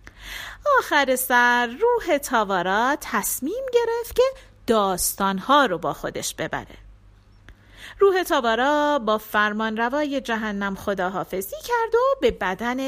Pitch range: 200-320 Hz